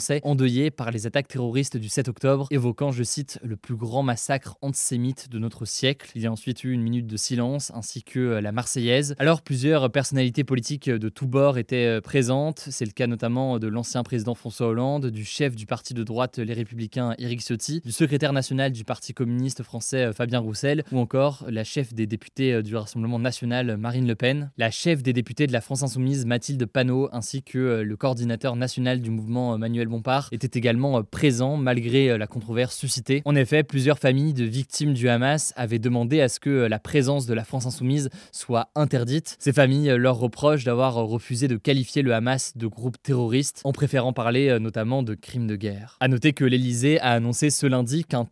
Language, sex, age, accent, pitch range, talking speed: French, male, 20-39, French, 120-140 Hz, 195 wpm